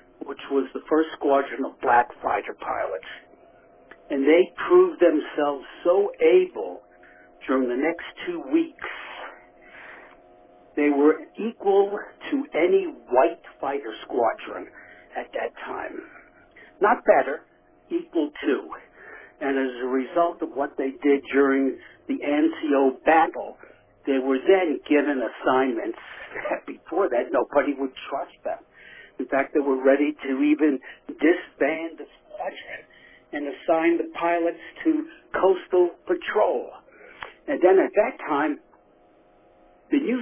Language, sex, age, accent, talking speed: English, male, 60-79, American, 125 wpm